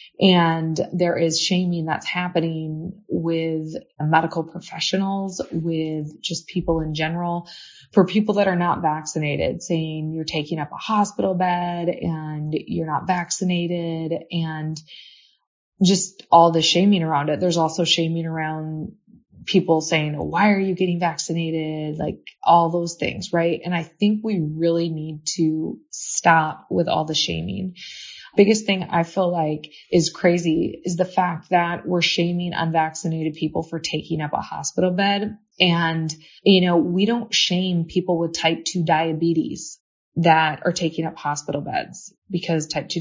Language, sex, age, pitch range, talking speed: English, female, 20-39, 160-180 Hz, 150 wpm